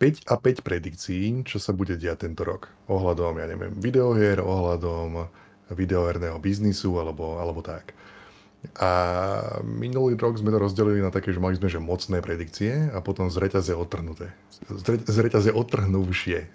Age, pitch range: 20-39, 90-110 Hz